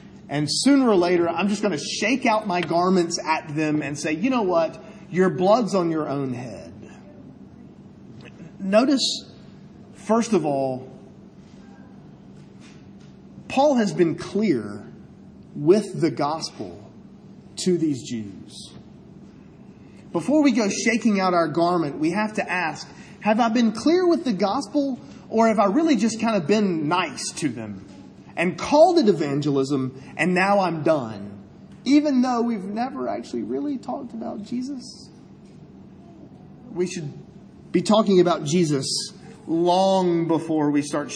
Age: 30-49